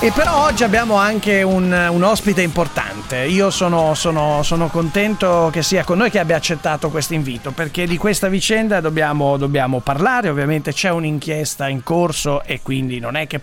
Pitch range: 145-205 Hz